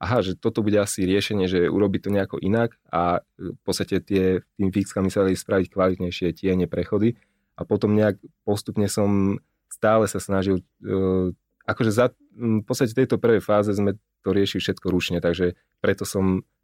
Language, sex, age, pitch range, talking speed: Slovak, male, 30-49, 90-100 Hz, 165 wpm